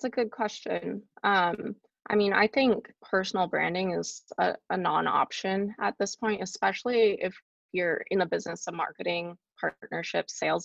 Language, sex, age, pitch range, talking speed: English, female, 20-39, 175-210 Hz, 150 wpm